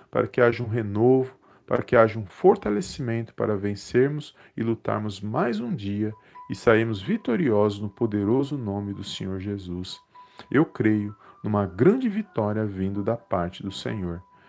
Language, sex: Portuguese, male